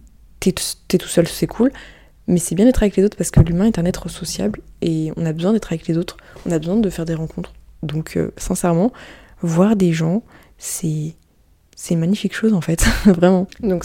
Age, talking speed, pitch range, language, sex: 20-39, 210 wpm, 165-195 Hz, French, female